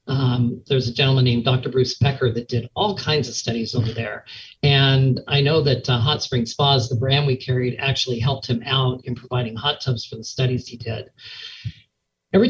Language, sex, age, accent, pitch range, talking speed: English, male, 40-59, American, 125-140 Hz, 200 wpm